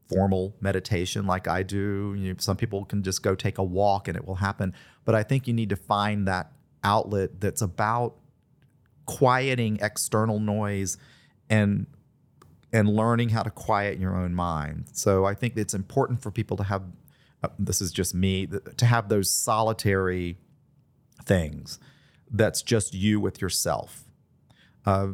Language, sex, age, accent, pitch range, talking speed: English, male, 40-59, American, 95-115 Hz, 155 wpm